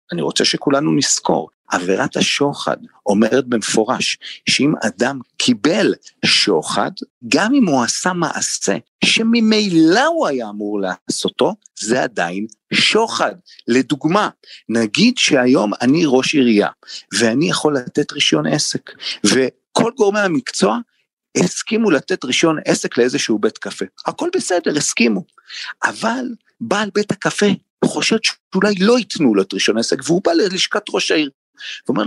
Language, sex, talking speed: Hebrew, male, 125 wpm